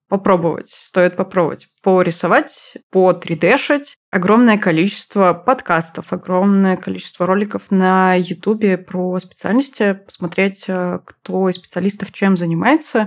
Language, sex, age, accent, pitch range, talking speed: Russian, female, 20-39, native, 185-230 Hz, 100 wpm